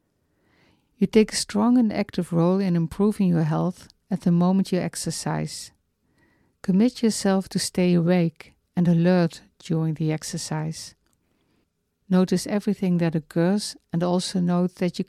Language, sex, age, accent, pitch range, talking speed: English, female, 60-79, Dutch, 160-195 Hz, 140 wpm